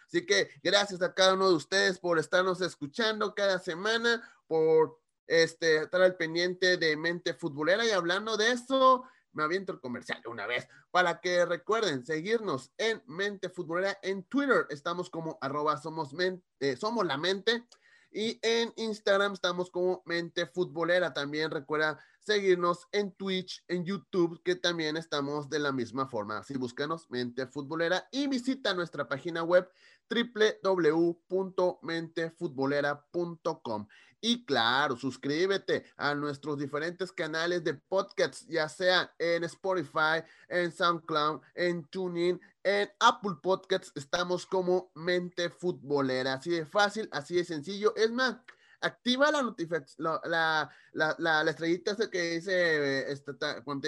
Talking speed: 145 wpm